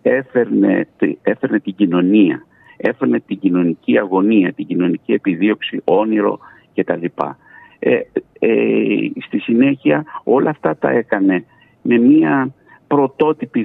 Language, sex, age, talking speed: Greek, male, 50-69, 115 wpm